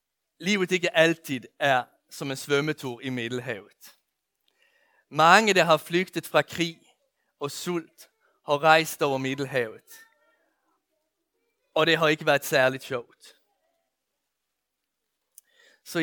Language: Danish